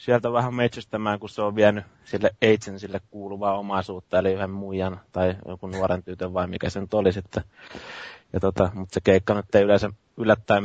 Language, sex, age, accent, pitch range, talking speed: Finnish, male, 20-39, native, 95-110 Hz, 185 wpm